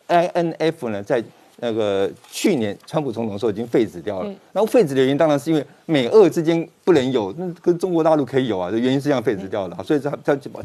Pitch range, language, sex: 125-180 Hz, Chinese, male